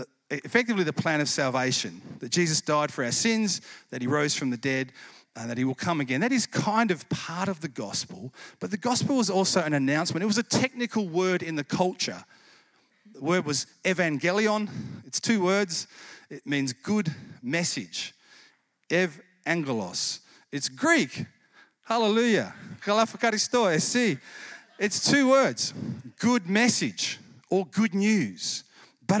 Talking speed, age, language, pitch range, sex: 145 wpm, 40-59, English, 150-215 Hz, male